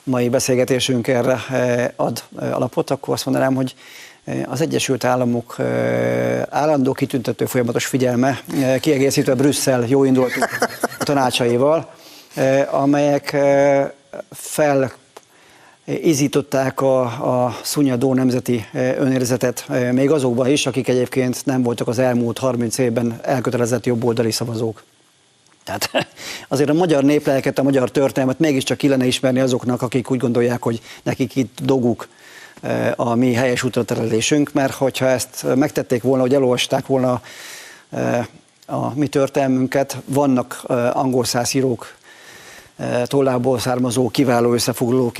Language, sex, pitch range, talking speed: Hungarian, male, 120-135 Hz, 110 wpm